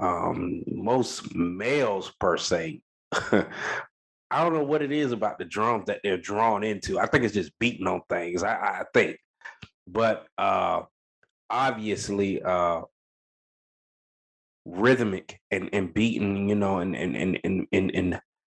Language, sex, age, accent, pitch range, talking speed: English, male, 30-49, American, 95-110 Hz, 145 wpm